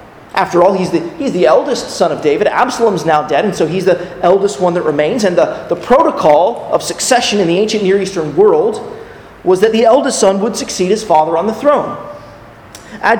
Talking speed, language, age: 205 wpm, English, 30-49